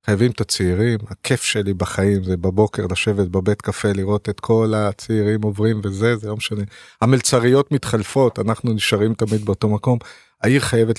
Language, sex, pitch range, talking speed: Hebrew, male, 105-140 Hz, 160 wpm